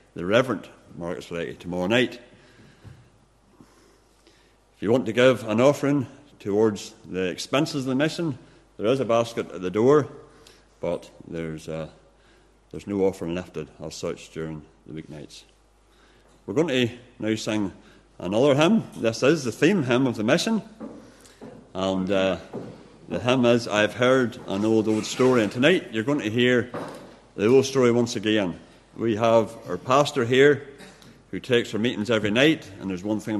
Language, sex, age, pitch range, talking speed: English, male, 50-69, 95-125 Hz, 160 wpm